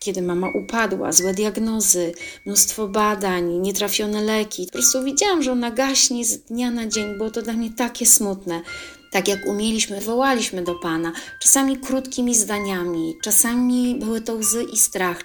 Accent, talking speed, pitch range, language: native, 155 wpm, 195-260 Hz, Polish